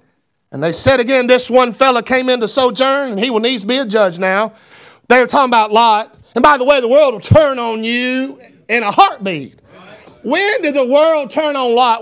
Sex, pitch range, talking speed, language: male, 220-275 Hz, 220 wpm, English